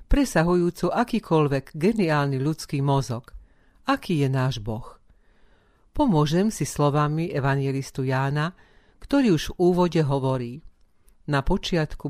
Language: Slovak